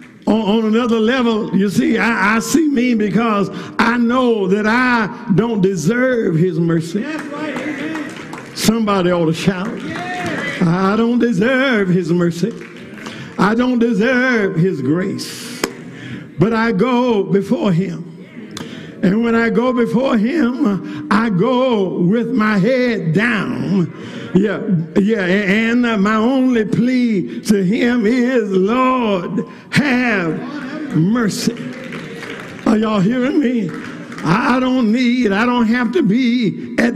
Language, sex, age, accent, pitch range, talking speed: English, male, 50-69, American, 200-250 Hz, 120 wpm